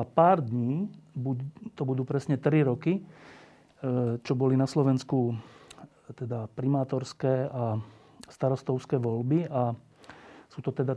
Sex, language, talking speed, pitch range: male, Slovak, 115 wpm, 125-150 Hz